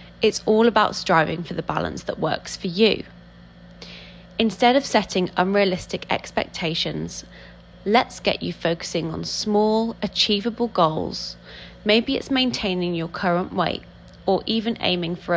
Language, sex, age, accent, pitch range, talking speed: English, female, 20-39, British, 170-220 Hz, 135 wpm